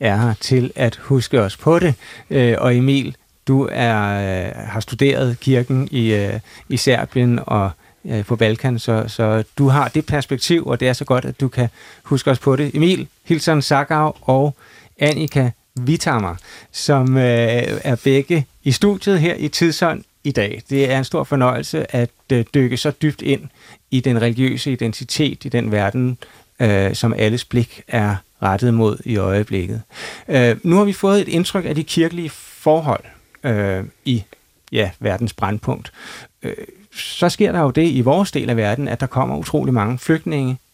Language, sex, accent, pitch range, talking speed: Danish, male, native, 115-145 Hz, 160 wpm